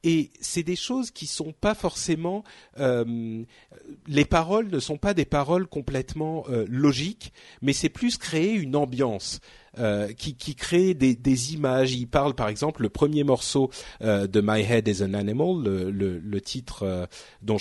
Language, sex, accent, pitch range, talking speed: French, male, French, 115-165 Hz, 180 wpm